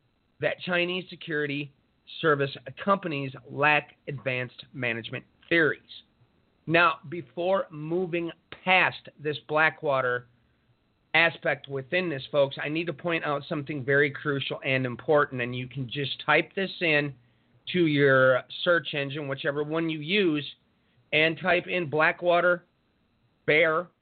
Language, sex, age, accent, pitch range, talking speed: English, male, 40-59, American, 140-175 Hz, 120 wpm